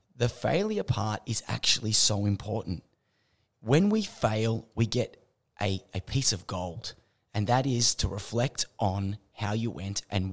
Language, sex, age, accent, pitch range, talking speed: English, male, 30-49, Australian, 105-125 Hz, 155 wpm